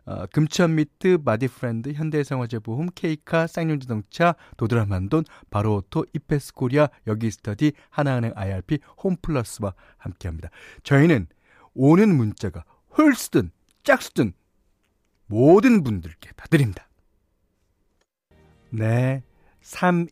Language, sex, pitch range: Korean, male, 105-165 Hz